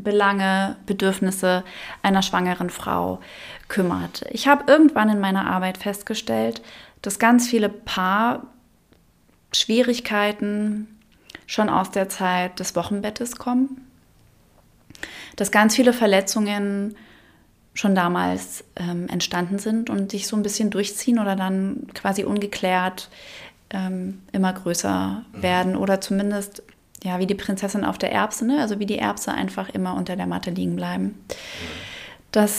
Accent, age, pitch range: German, 30-49, 190-220 Hz